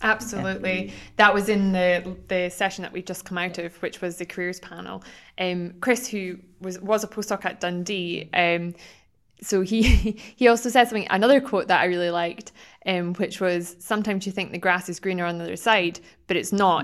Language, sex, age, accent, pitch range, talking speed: English, female, 20-39, British, 175-195 Hz, 205 wpm